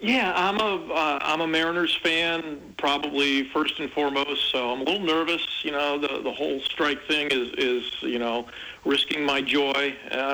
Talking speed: 185 wpm